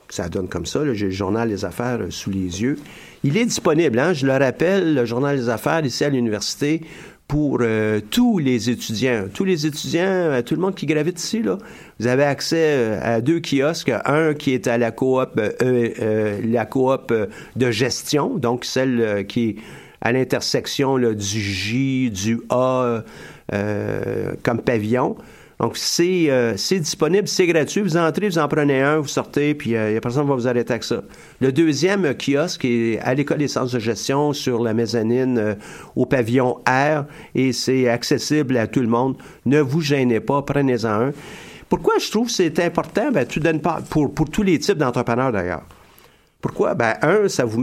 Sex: male